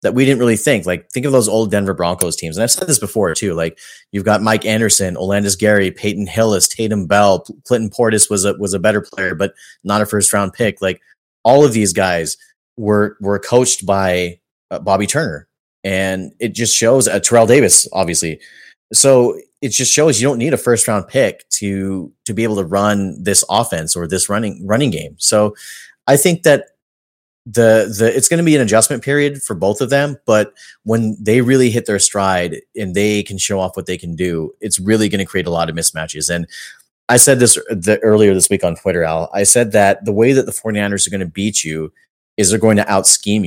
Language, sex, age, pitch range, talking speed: English, male, 30-49, 95-115 Hz, 220 wpm